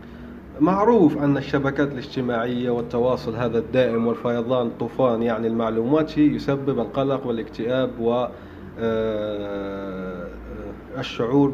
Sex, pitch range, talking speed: male, 115-150 Hz, 85 wpm